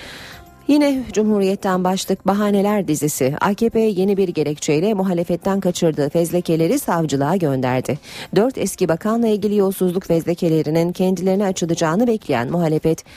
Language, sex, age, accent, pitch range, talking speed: Turkish, female, 40-59, native, 150-200 Hz, 110 wpm